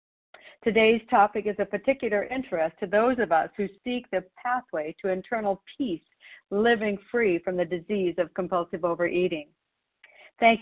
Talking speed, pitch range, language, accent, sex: 145 wpm, 180-220 Hz, English, American, female